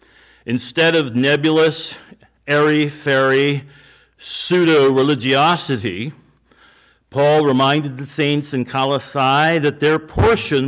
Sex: male